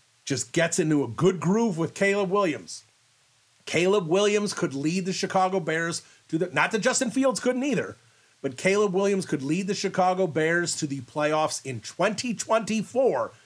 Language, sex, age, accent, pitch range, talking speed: English, male, 40-59, American, 140-190 Hz, 165 wpm